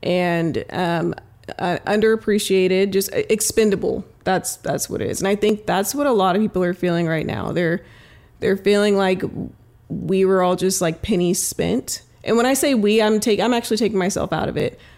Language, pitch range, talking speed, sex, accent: English, 185-230 Hz, 195 wpm, female, American